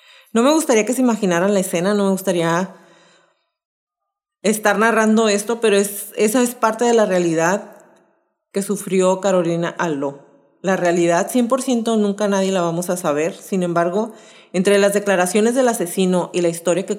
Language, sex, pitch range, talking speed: Spanish, female, 175-220 Hz, 160 wpm